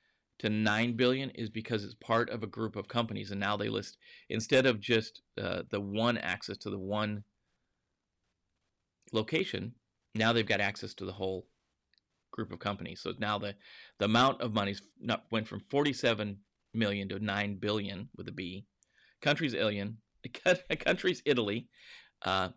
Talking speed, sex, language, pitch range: 160 wpm, male, English, 100-120 Hz